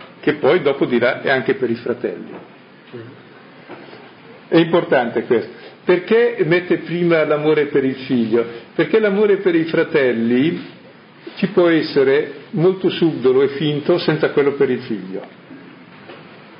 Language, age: Italian, 50-69